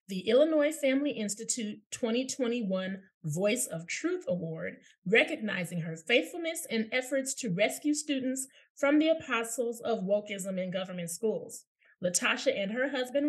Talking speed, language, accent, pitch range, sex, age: 130 wpm, English, American, 185-260 Hz, female, 30-49